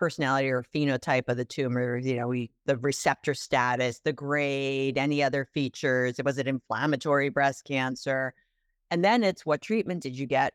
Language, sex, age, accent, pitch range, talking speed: English, female, 50-69, American, 140-180 Hz, 180 wpm